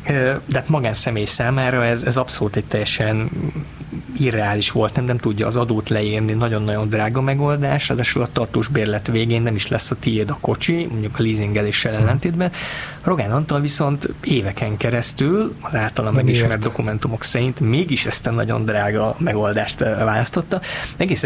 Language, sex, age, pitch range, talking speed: Hungarian, male, 20-39, 110-135 Hz, 150 wpm